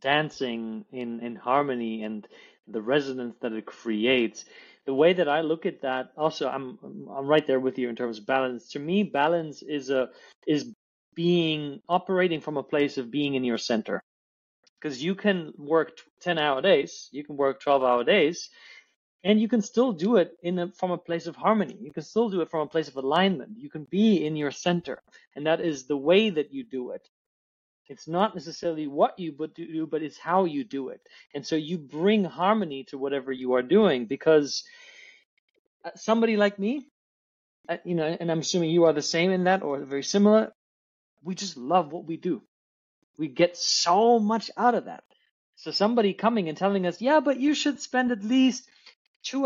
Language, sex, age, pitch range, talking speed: English, male, 30-49, 140-210 Hz, 200 wpm